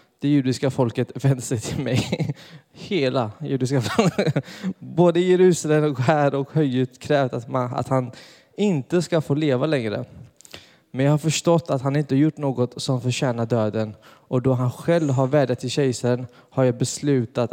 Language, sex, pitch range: Swedish, male, 125-150 Hz